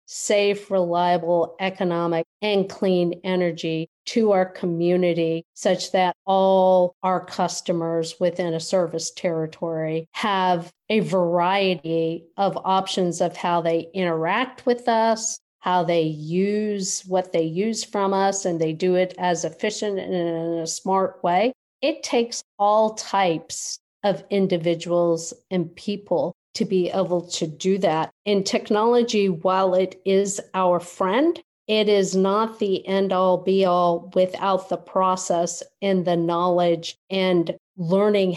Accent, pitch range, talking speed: American, 170-195 Hz, 135 wpm